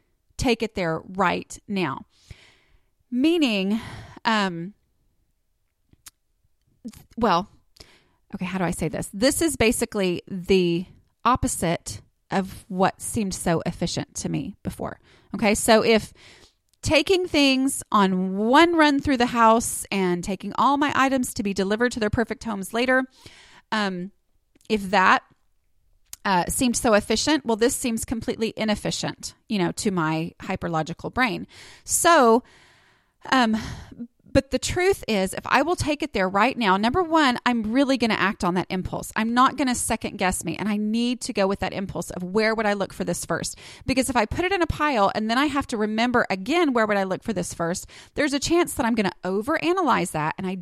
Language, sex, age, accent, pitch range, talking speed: English, female, 30-49, American, 190-250 Hz, 175 wpm